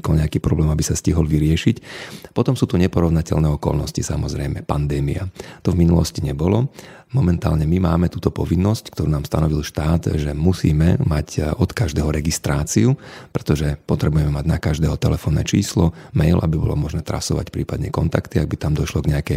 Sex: male